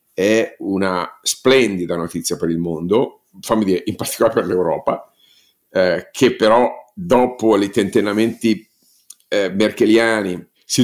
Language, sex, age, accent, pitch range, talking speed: Italian, male, 50-69, native, 95-120 Hz, 120 wpm